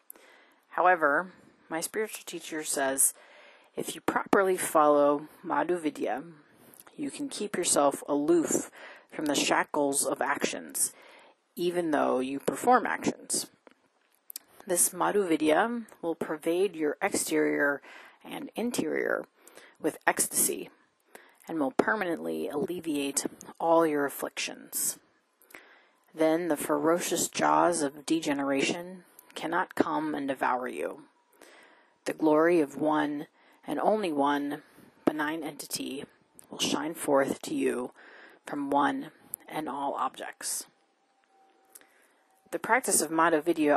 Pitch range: 150-210 Hz